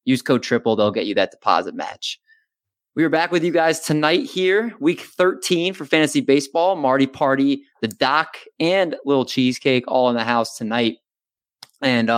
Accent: American